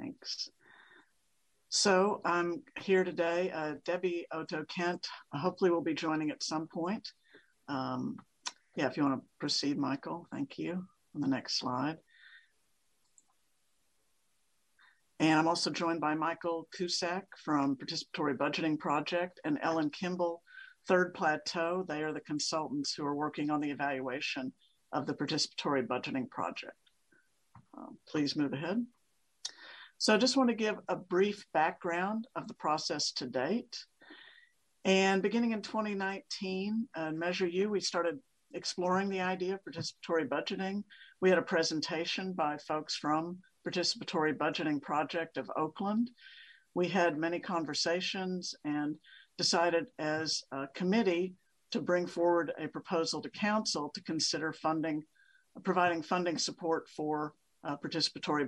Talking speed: 135 wpm